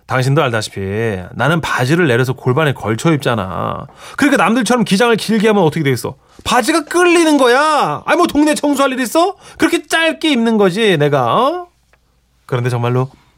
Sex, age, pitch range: male, 30-49, 150-235 Hz